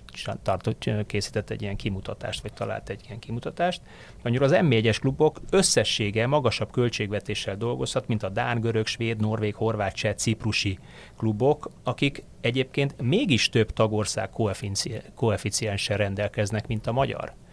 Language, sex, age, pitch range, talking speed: Hungarian, male, 30-49, 105-120 Hz, 130 wpm